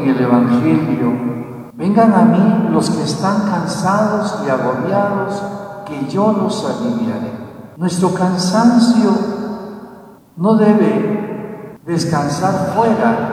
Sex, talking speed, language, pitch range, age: male, 95 wpm, Spanish, 150-210 Hz, 60-79